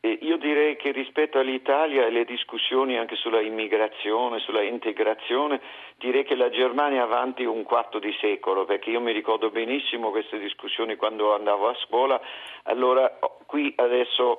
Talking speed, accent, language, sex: 160 wpm, native, Italian, male